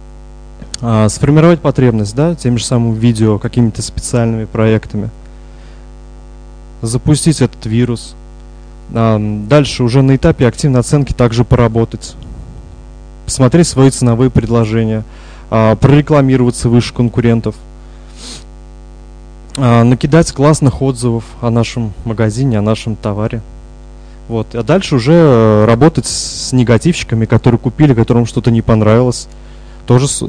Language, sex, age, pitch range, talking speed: Russian, male, 20-39, 85-130 Hz, 100 wpm